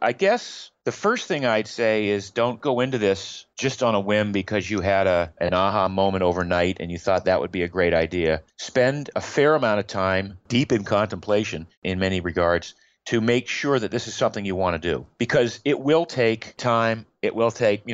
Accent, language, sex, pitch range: American, English, male, 100-145 Hz